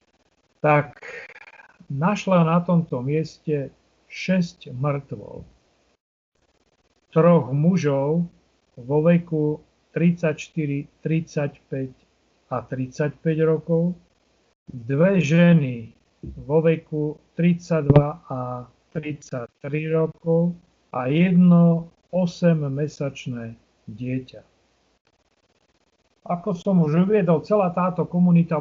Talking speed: 75 wpm